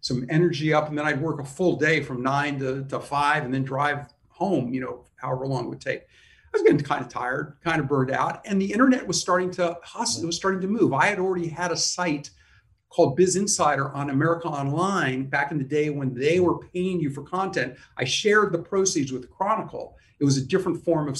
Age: 50-69